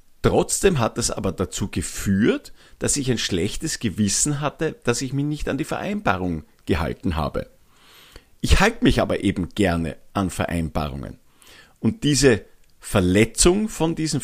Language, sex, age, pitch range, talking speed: German, male, 50-69, 95-130 Hz, 145 wpm